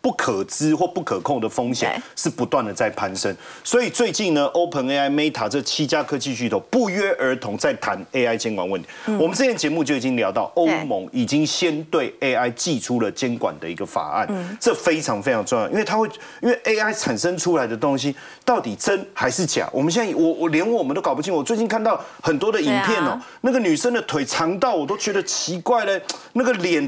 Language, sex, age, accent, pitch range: Chinese, male, 40-59, native, 150-240 Hz